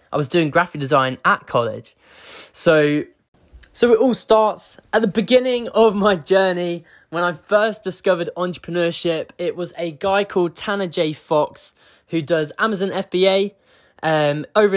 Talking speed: 150 wpm